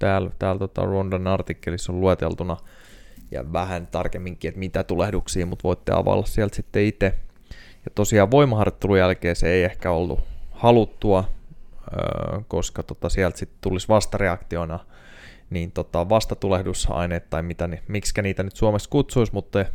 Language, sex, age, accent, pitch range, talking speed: Finnish, male, 20-39, native, 90-110 Hz, 135 wpm